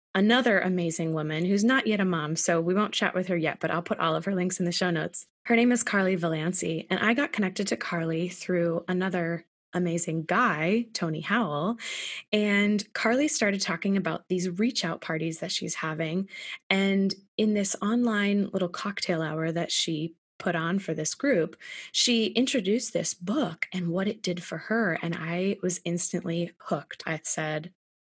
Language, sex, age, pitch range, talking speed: English, female, 20-39, 165-210 Hz, 180 wpm